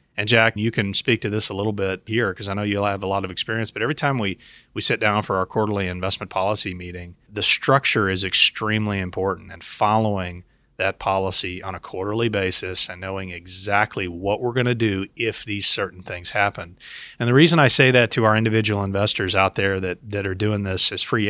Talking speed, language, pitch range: 220 wpm, English, 95-115 Hz